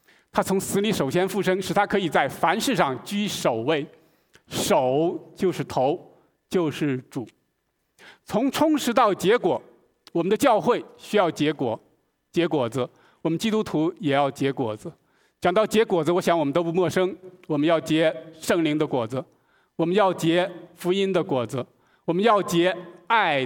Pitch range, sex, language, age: 140-210 Hz, male, Chinese, 50-69